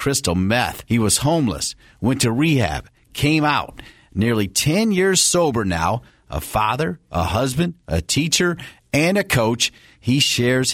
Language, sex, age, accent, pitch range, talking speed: English, male, 50-69, American, 105-155 Hz, 145 wpm